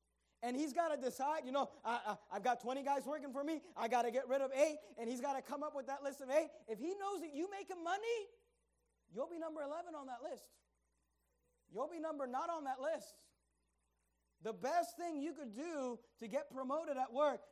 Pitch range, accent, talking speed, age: 210-300 Hz, American, 225 wpm, 30-49